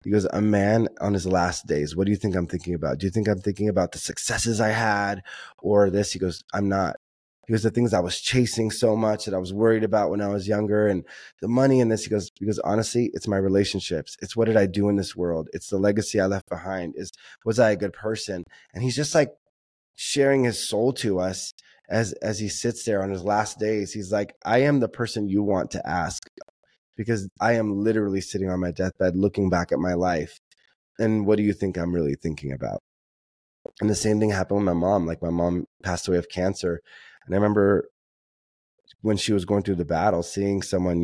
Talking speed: 230 wpm